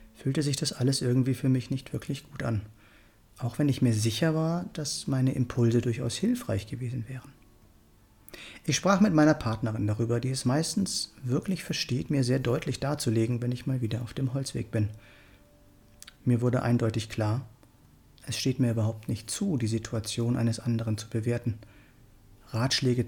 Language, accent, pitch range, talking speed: German, German, 110-135 Hz, 165 wpm